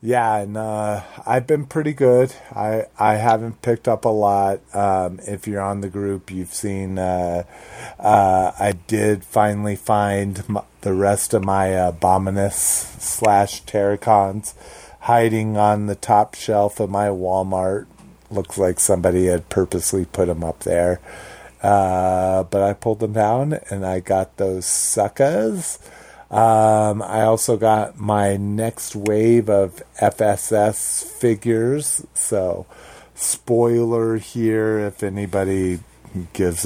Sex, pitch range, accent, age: male, 95-115 Hz, American, 30-49